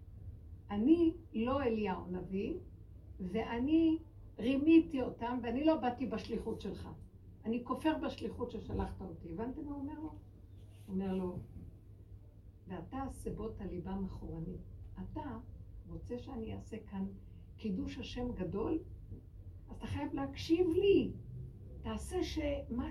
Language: Hebrew